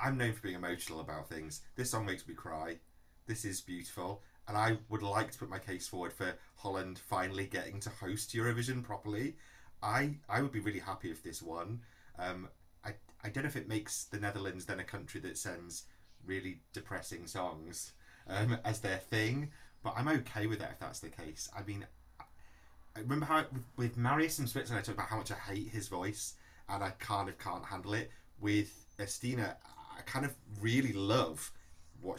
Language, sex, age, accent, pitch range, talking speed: English, male, 30-49, British, 85-110 Hz, 200 wpm